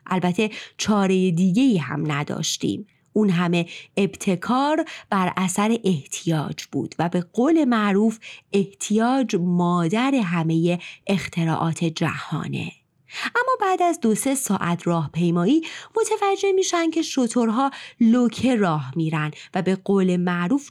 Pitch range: 175-250 Hz